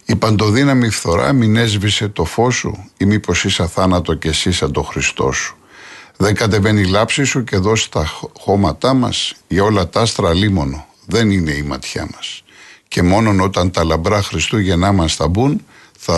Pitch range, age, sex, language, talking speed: 80-110 Hz, 50-69, male, Greek, 180 wpm